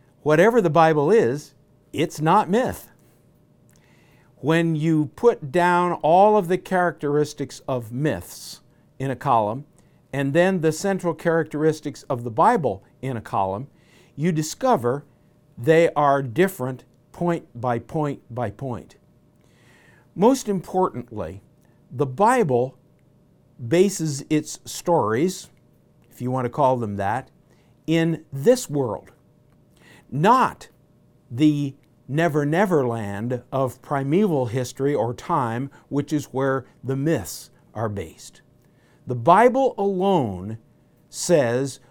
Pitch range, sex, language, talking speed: 125-165 Hz, male, English, 110 wpm